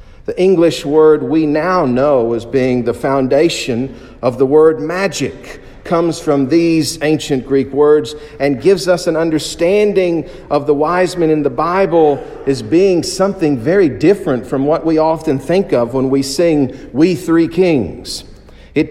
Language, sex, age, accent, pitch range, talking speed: English, male, 50-69, American, 140-185 Hz, 160 wpm